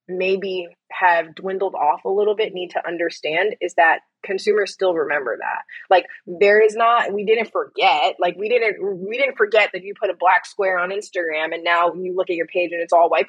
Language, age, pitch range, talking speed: English, 20-39, 185-310 Hz, 215 wpm